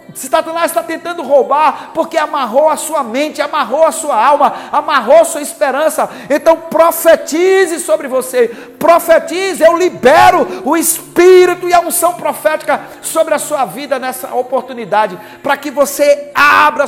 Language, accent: Portuguese, Brazilian